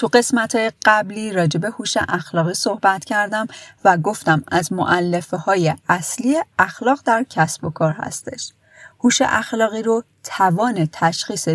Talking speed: 130 wpm